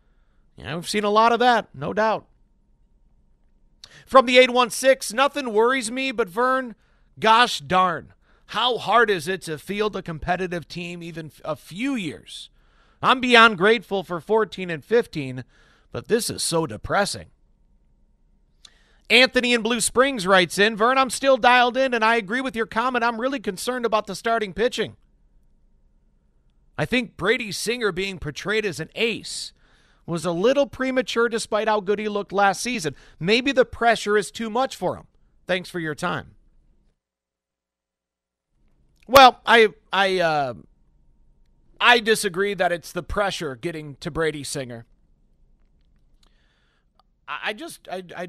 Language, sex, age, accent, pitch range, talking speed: English, male, 40-59, American, 175-230 Hz, 150 wpm